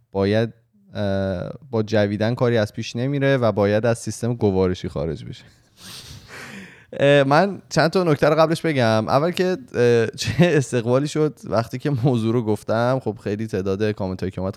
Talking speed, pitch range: 150 wpm, 95-120 Hz